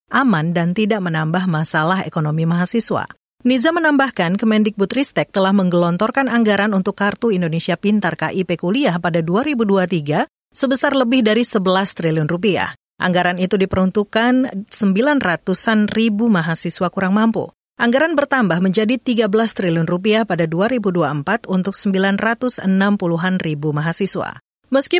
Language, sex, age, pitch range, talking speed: Indonesian, female, 40-59, 170-225 Hz, 115 wpm